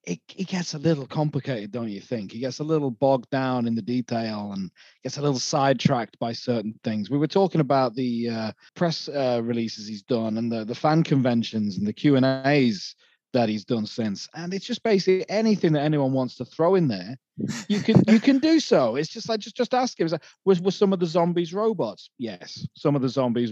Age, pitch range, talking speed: 30-49, 120-175 Hz, 225 wpm